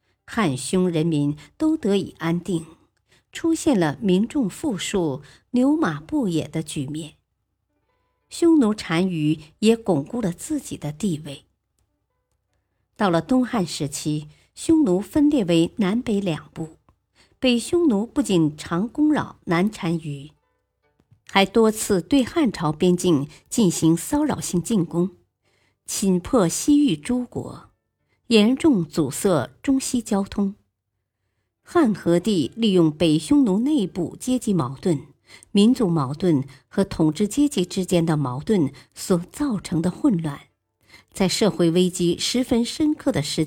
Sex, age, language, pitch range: male, 50-69, Chinese, 155-230 Hz